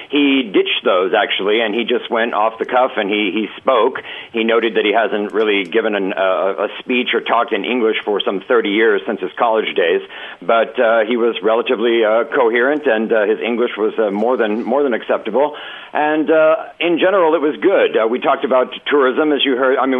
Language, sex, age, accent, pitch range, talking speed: English, male, 50-69, American, 115-155 Hz, 220 wpm